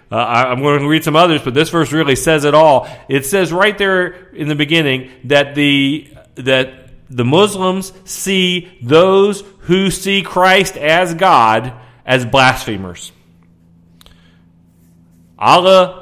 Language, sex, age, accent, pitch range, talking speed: English, male, 40-59, American, 115-170 Hz, 135 wpm